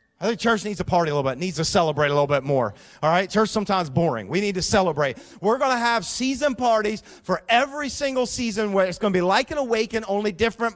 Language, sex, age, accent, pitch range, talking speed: English, male, 40-59, American, 145-225 Hz, 250 wpm